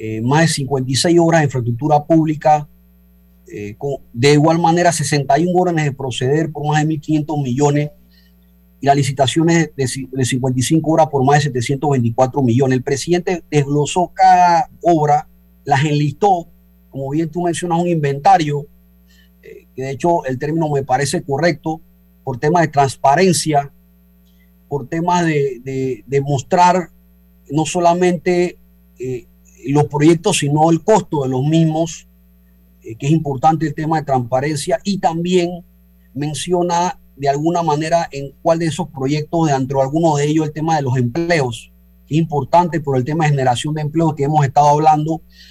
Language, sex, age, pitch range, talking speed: Spanish, male, 30-49, 130-165 Hz, 160 wpm